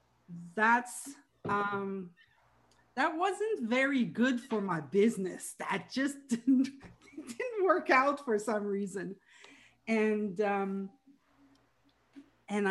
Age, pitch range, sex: 40-59, 175-235 Hz, female